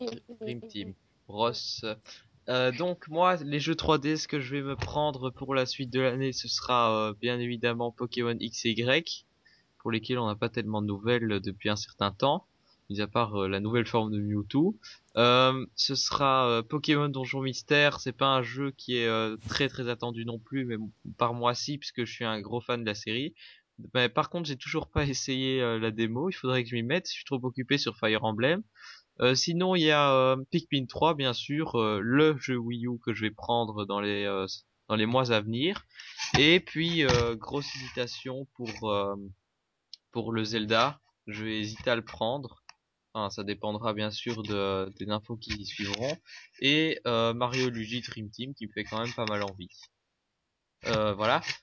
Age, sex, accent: 20-39, male, French